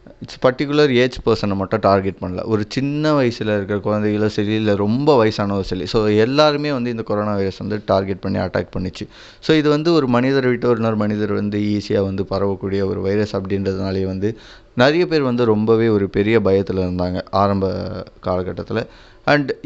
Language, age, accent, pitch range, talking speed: Tamil, 20-39, native, 100-115 Hz, 170 wpm